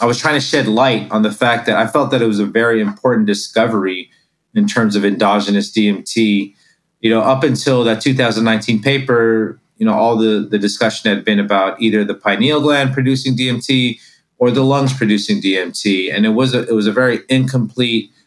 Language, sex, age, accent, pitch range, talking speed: English, male, 30-49, American, 100-115 Hz, 195 wpm